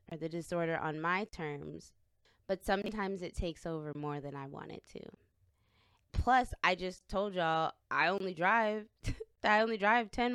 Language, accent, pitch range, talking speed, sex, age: English, American, 165-215 Hz, 170 wpm, female, 20-39